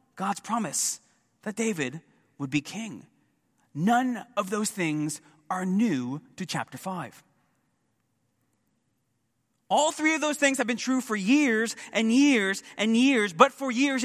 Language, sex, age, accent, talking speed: English, male, 30-49, American, 140 wpm